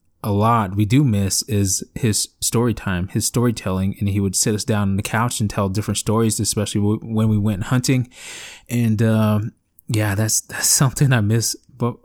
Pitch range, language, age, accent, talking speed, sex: 105-120 Hz, English, 20-39, American, 190 wpm, male